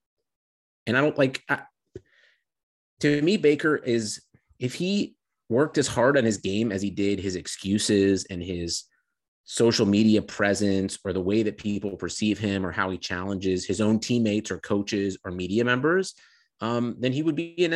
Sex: male